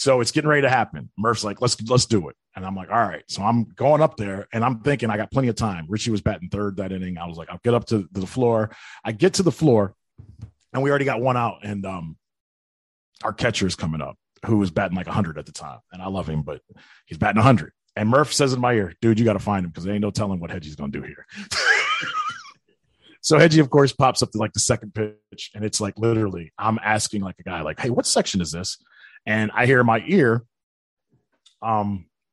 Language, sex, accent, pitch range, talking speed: English, male, American, 105-130 Hz, 250 wpm